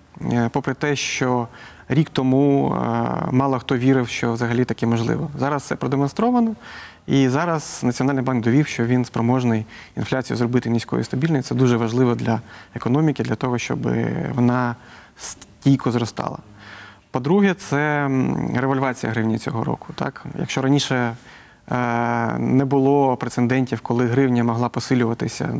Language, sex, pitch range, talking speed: Ukrainian, male, 120-135 Hz, 130 wpm